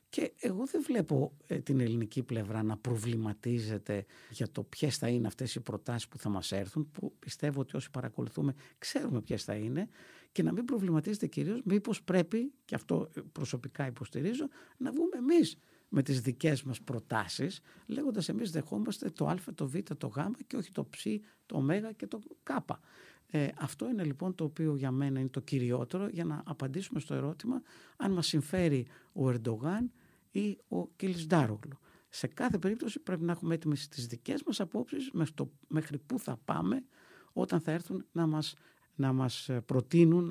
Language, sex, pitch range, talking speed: Greek, male, 130-180 Hz, 170 wpm